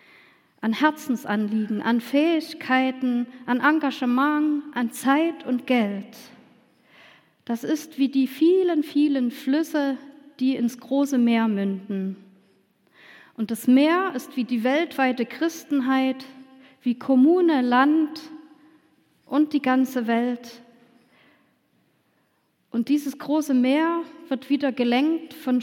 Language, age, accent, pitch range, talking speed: German, 40-59, German, 235-280 Hz, 105 wpm